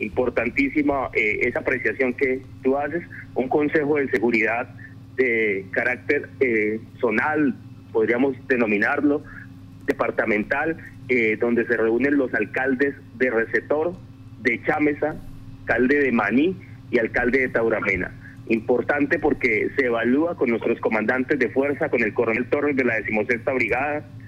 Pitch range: 120-145 Hz